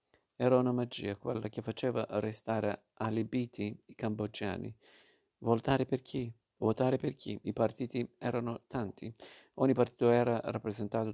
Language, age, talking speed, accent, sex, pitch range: Italian, 40-59, 130 wpm, native, male, 110-120 Hz